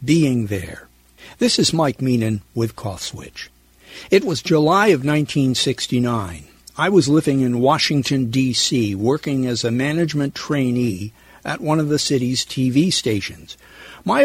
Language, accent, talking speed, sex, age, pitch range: English, American, 140 wpm, male, 60-79, 115-155 Hz